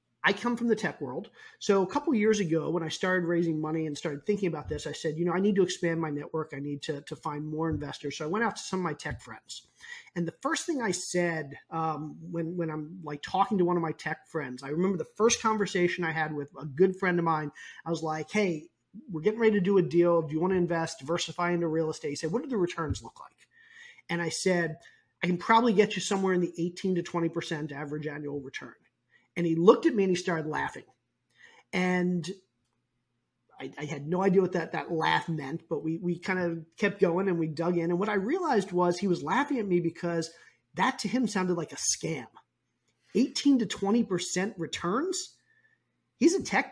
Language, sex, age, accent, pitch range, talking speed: English, male, 30-49, American, 160-205 Hz, 230 wpm